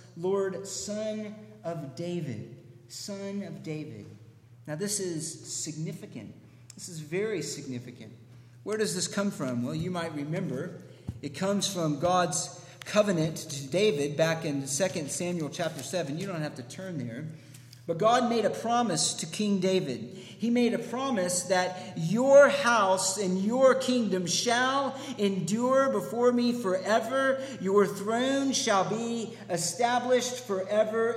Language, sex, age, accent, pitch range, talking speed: English, male, 50-69, American, 165-230 Hz, 135 wpm